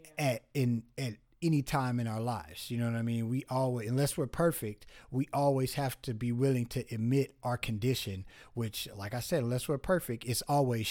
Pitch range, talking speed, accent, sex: 120-145 Hz, 205 wpm, American, male